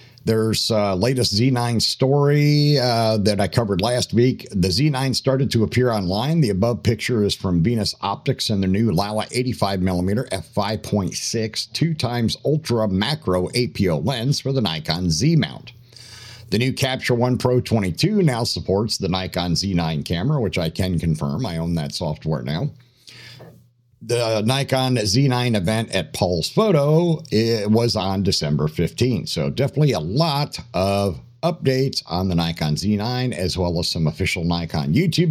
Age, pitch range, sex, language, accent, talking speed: 50-69, 95-130 Hz, male, English, American, 155 wpm